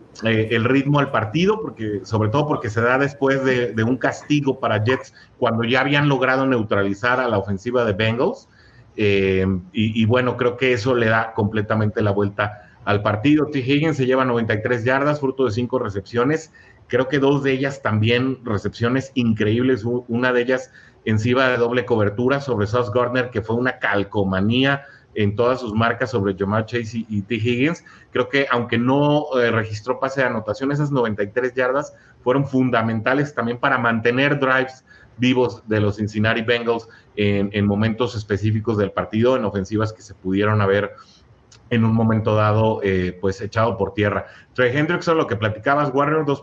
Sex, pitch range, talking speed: male, 110-130 Hz, 175 wpm